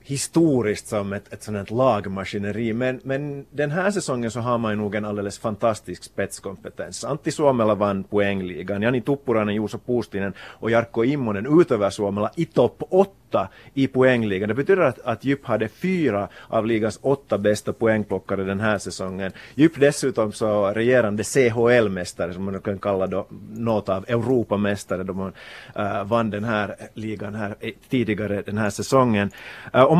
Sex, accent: male, Finnish